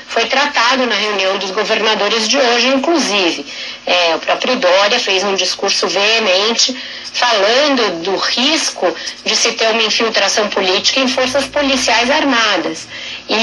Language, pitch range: Portuguese, 200-270 Hz